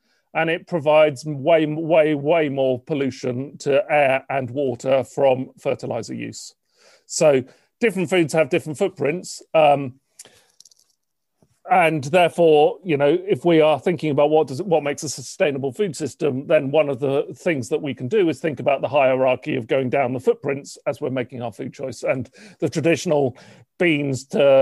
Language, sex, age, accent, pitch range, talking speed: English, male, 40-59, British, 135-165 Hz, 165 wpm